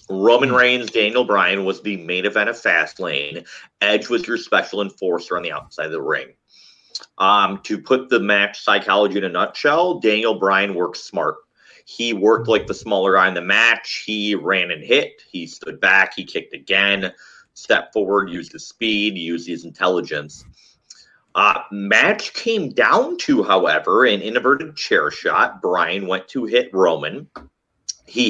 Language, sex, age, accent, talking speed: English, male, 30-49, American, 165 wpm